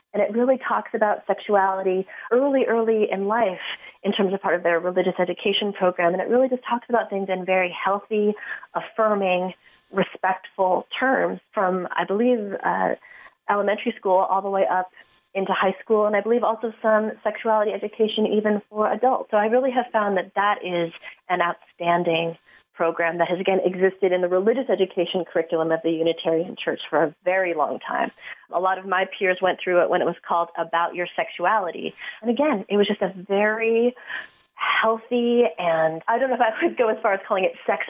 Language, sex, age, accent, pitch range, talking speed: English, female, 30-49, American, 180-220 Hz, 190 wpm